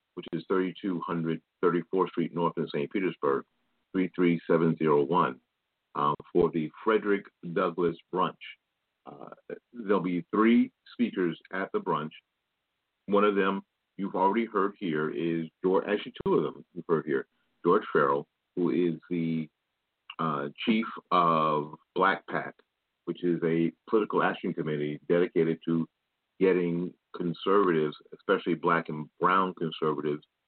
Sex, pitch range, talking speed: male, 80-95 Hz, 130 wpm